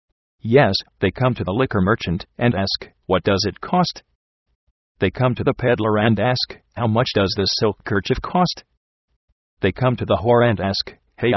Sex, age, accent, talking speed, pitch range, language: male, 50-69, American, 185 wpm, 90-120 Hz, English